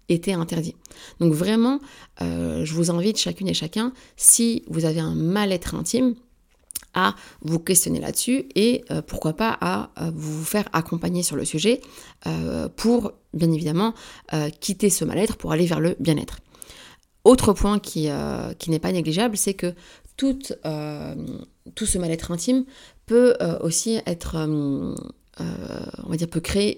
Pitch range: 160-210 Hz